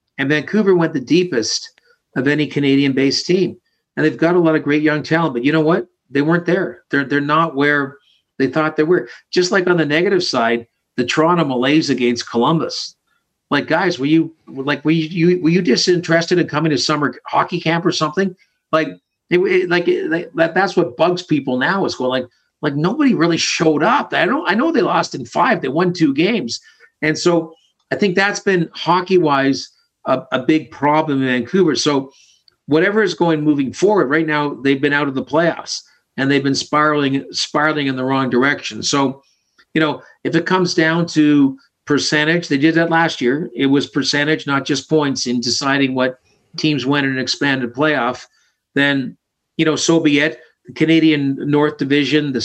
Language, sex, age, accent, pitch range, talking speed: English, male, 50-69, American, 140-165 Hz, 195 wpm